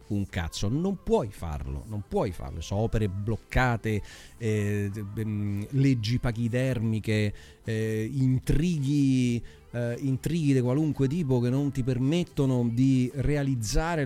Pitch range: 115-145 Hz